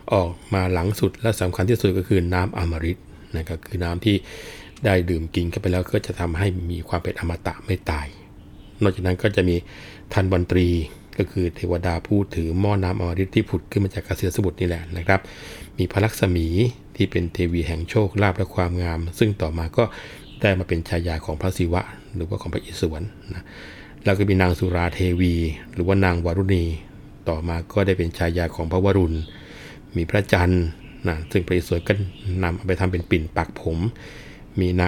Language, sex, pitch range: Thai, male, 85-100 Hz